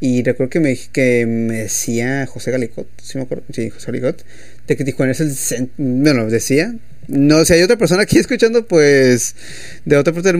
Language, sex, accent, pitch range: Spanish, male, Mexican, 120-150 Hz